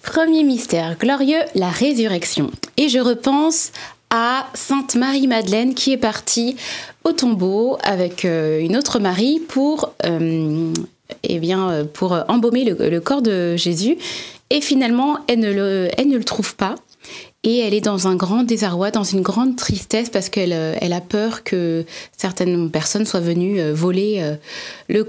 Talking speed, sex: 155 wpm, female